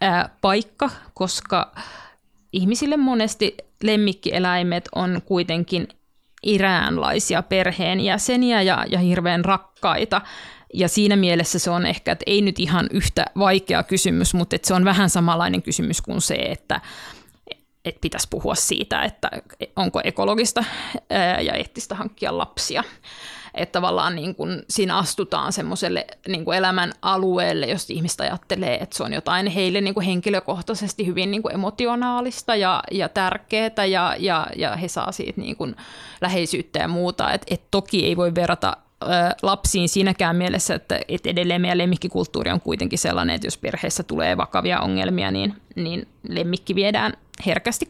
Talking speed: 140 wpm